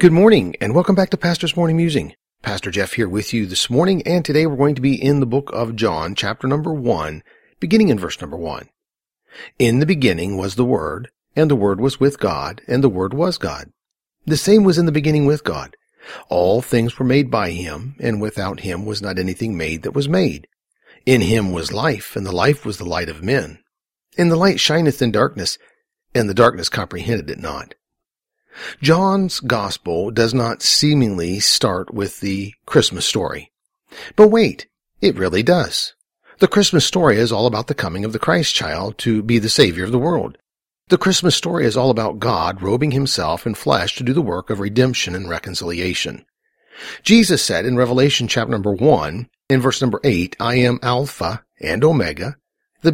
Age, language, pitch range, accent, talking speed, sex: 40-59, English, 105-155 Hz, American, 195 wpm, male